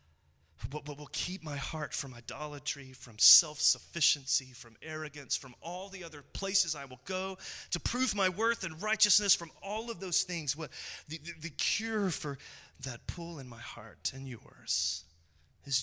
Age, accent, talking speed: 30-49, American, 170 wpm